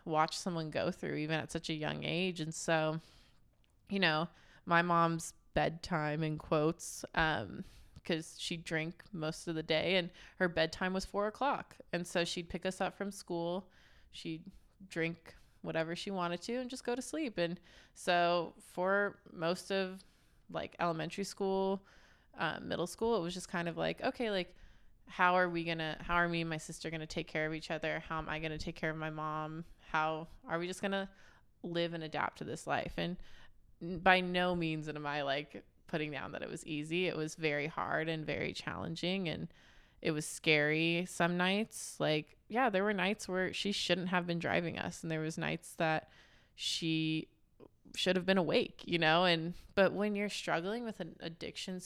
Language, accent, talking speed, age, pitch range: English, American, 190 wpm, 20-39, 160-185 Hz